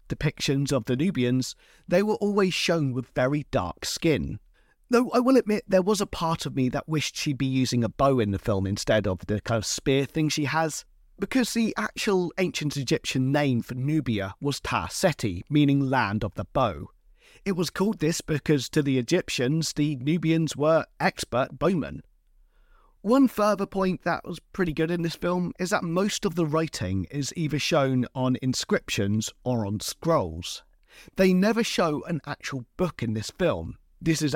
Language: English